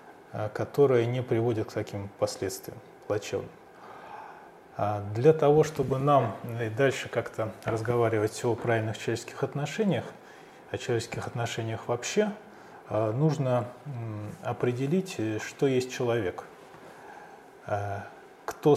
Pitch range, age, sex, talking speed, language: 115-155 Hz, 20-39, male, 95 wpm, Russian